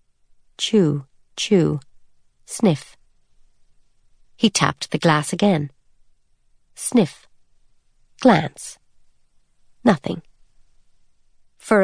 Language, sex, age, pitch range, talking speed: English, female, 50-69, 145-185 Hz, 60 wpm